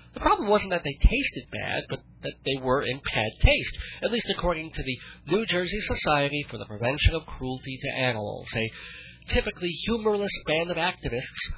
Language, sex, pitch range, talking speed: English, male, 135-215 Hz, 180 wpm